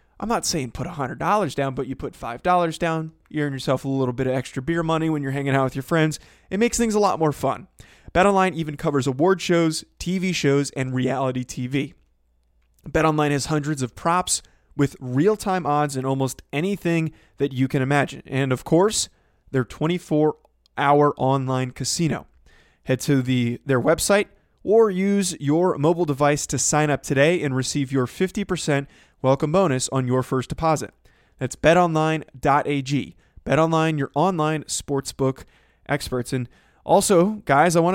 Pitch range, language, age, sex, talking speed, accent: 135-170 Hz, English, 20-39, male, 165 wpm, American